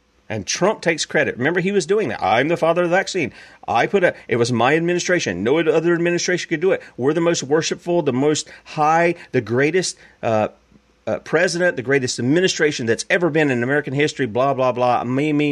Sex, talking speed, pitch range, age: male, 210 wpm, 120-185 Hz, 40-59